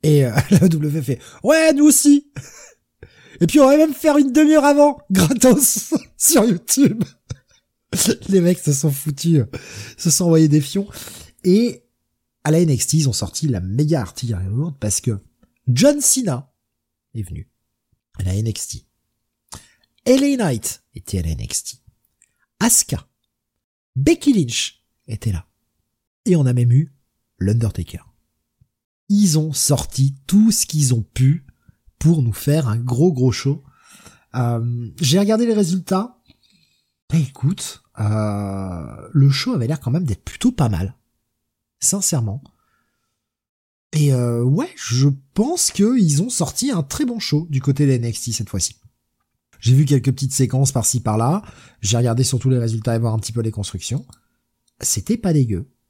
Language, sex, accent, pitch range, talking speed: French, male, French, 115-175 Hz, 150 wpm